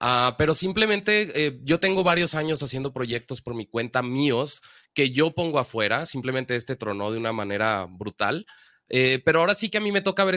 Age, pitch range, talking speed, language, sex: 20-39, 120-155 Hz, 205 wpm, Spanish, male